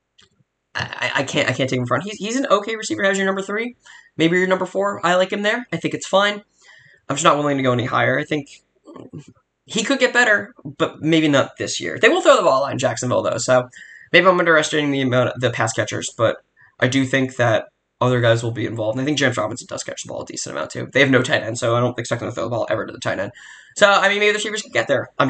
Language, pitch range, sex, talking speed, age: English, 130-215 Hz, male, 280 wpm, 10-29